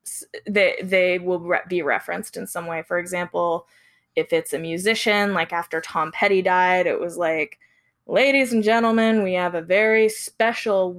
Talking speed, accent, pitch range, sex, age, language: 165 wpm, American, 175-215 Hz, female, 10-29, English